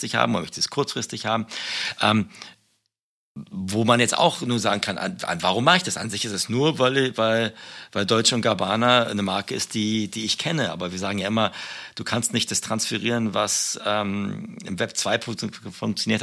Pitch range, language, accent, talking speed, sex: 105-125 Hz, German, German, 200 wpm, male